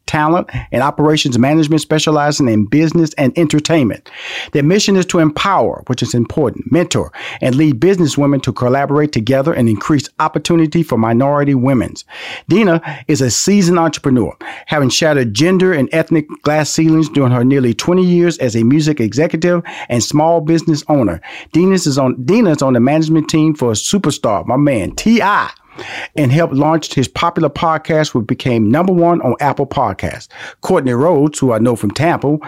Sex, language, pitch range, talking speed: male, English, 120-155 Hz, 165 wpm